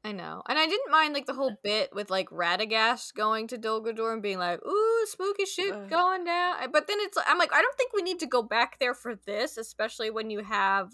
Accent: American